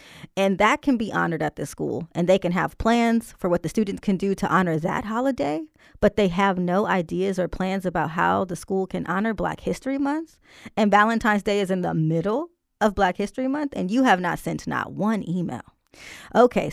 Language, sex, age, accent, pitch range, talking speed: English, female, 20-39, American, 175-220 Hz, 210 wpm